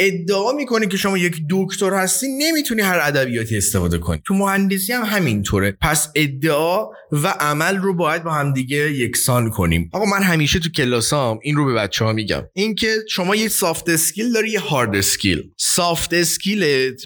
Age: 30-49